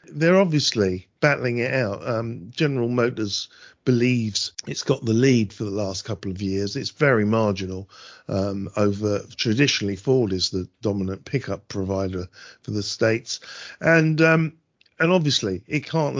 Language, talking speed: English, 145 wpm